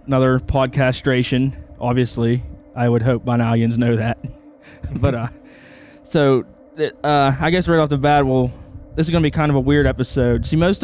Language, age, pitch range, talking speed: English, 20-39, 115-145 Hz, 175 wpm